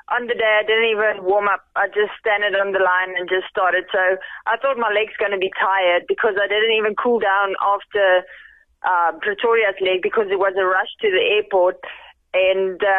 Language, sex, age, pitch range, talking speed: English, female, 20-39, 190-220 Hz, 210 wpm